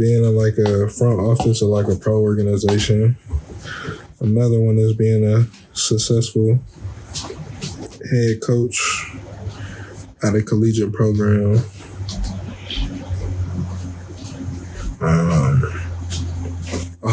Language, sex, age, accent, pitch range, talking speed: English, male, 20-39, American, 95-115 Hz, 90 wpm